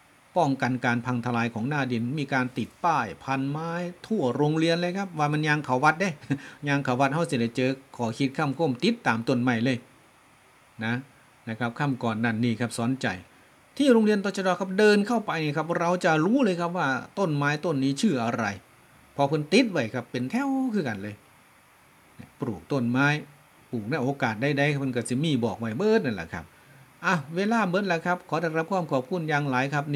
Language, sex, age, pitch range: Thai, male, 60-79, 120-155 Hz